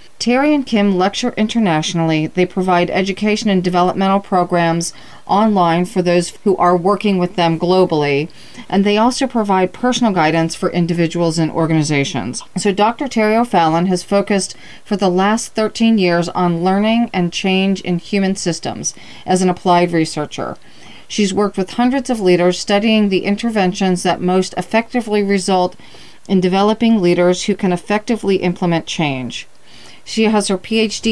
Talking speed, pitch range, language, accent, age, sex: 150 wpm, 175-210 Hz, English, American, 40-59, female